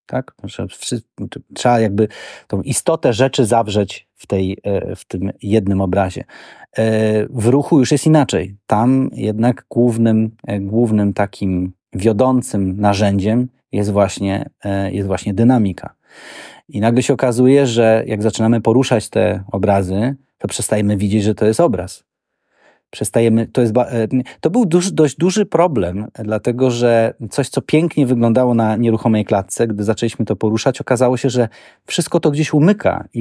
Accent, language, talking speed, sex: native, Polish, 135 wpm, male